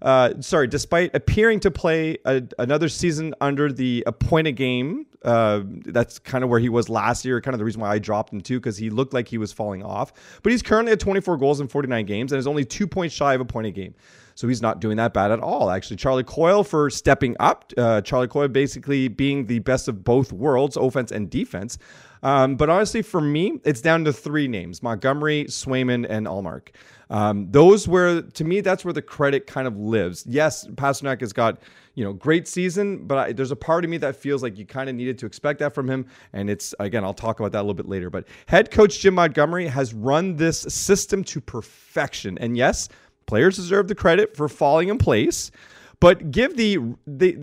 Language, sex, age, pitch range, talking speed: English, male, 30-49, 115-165 Hz, 220 wpm